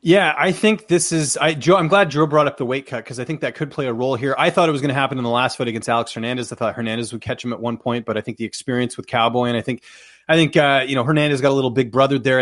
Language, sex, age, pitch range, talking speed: English, male, 30-49, 120-145 Hz, 330 wpm